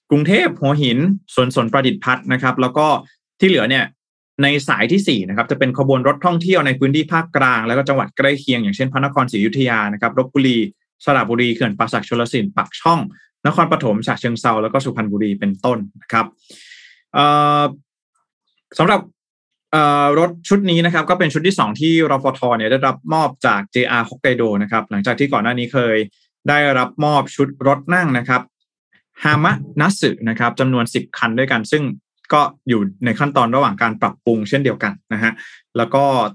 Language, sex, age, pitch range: Thai, male, 20-39, 120-145 Hz